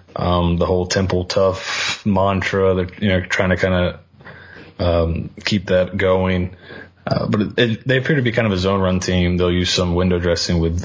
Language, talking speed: English, 205 wpm